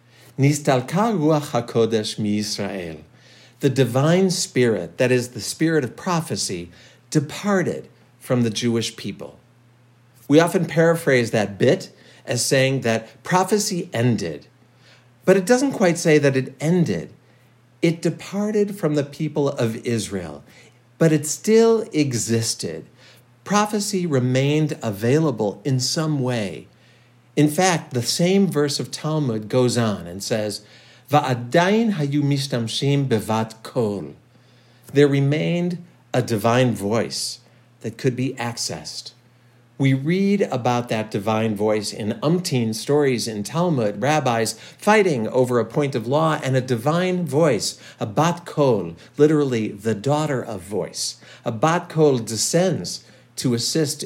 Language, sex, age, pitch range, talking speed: English, male, 50-69, 115-155 Hz, 115 wpm